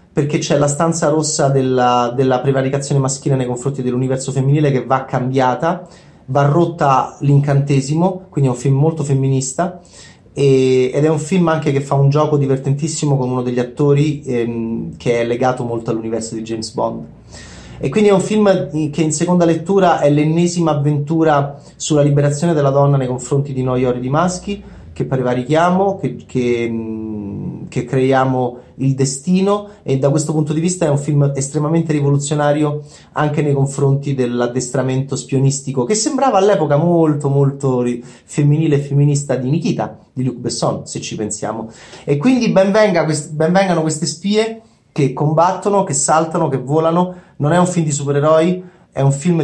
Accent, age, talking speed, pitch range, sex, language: native, 30-49, 160 wpm, 130-160 Hz, male, Italian